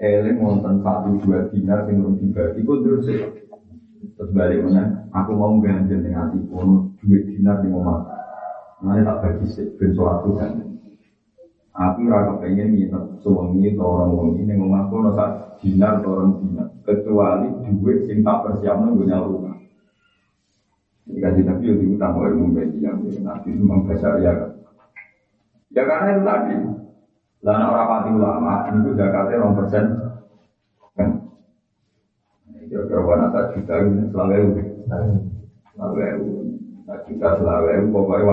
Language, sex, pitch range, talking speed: Indonesian, male, 95-105 Hz, 110 wpm